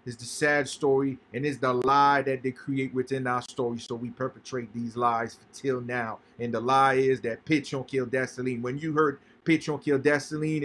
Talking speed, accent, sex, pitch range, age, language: 210 wpm, American, male, 125-145 Hz, 30-49, English